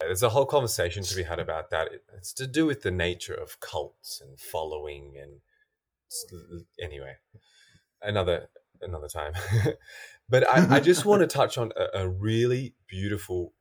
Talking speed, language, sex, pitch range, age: 165 wpm, English, male, 95-150 Hz, 20-39